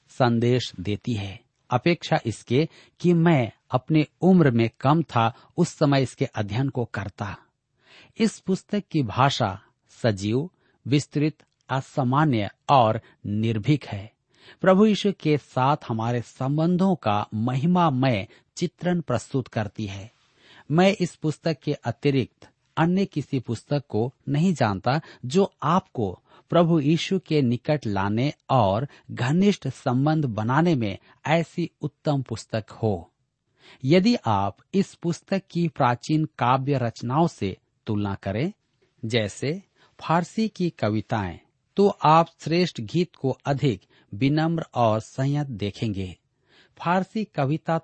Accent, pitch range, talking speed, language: native, 115-160 Hz, 120 wpm, Hindi